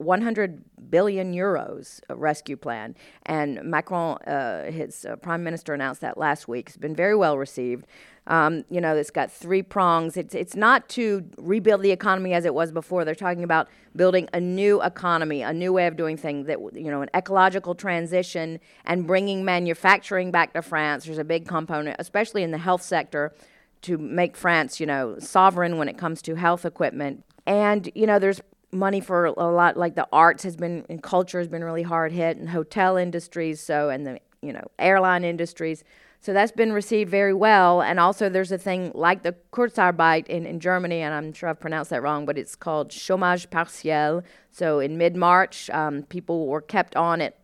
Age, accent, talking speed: 40-59, American, 195 wpm